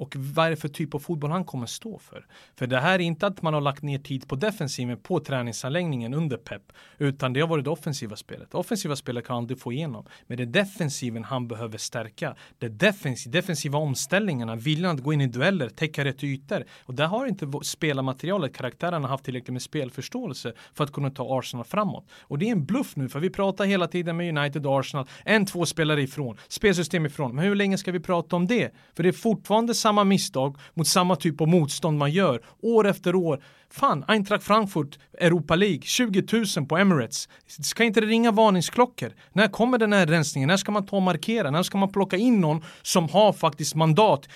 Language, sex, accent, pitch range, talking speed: Swedish, male, native, 140-195 Hz, 210 wpm